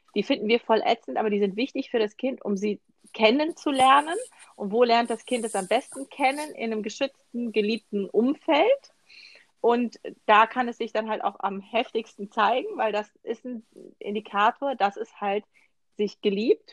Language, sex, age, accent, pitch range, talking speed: German, female, 30-49, German, 205-265 Hz, 180 wpm